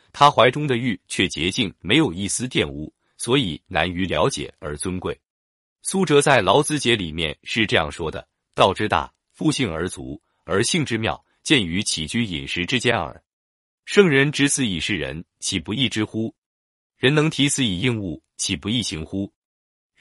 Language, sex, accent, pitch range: Chinese, male, native, 85-130 Hz